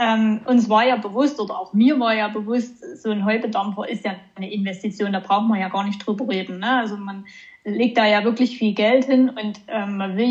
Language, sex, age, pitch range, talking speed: German, female, 20-39, 210-240 Hz, 225 wpm